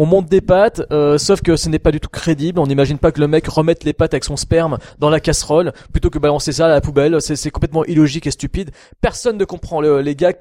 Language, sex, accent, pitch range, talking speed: French, male, French, 135-165 Hz, 270 wpm